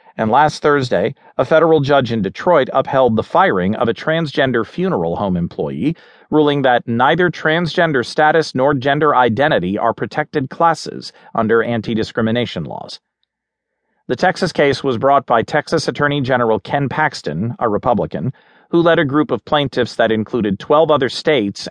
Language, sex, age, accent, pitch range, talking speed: English, male, 40-59, American, 120-160 Hz, 150 wpm